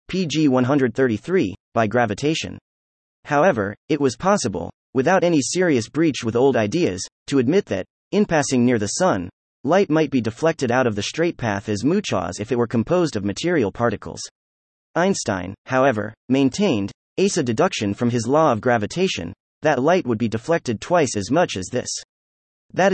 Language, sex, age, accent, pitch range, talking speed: English, male, 30-49, American, 105-155 Hz, 160 wpm